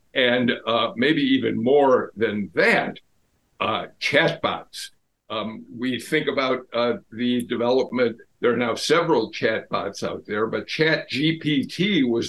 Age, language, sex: 60-79, English, male